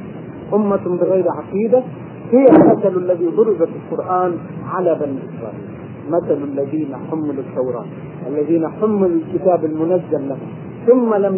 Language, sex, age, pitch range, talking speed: Arabic, male, 40-59, 165-195 Hz, 115 wpm